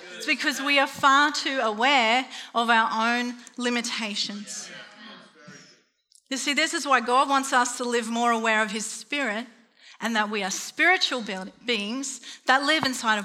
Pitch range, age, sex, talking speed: 225-275 Hz, 40-59, female, 165 wpm